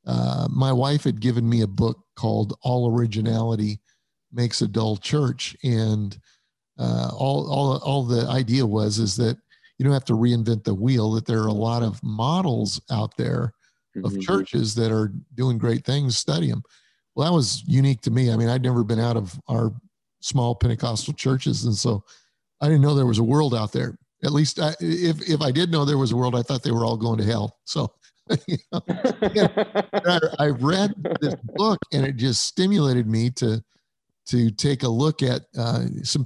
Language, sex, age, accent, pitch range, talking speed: English, male, 50-69, American, 115-140 Hz, 195 wpm